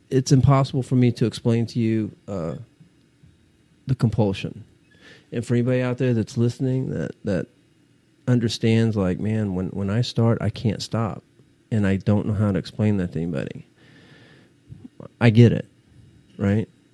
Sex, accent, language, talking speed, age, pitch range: male, American, English, 155 wpm, 40-59, 105-130 Hz